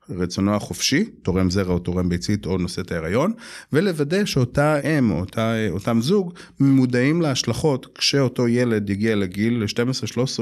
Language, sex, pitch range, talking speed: Hebrew, male, 100-120 Hz, 145 wpm